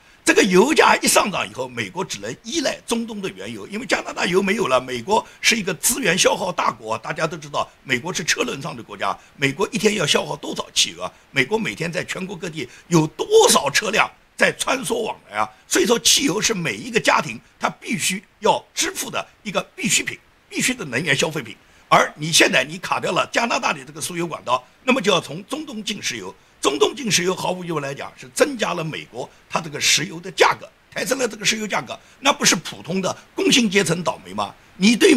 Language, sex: Chinese, male